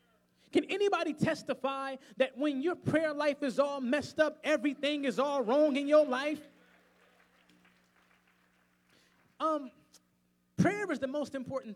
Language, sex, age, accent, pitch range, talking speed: English, male, 20-39, American, 210-315 Hz, 130 wpm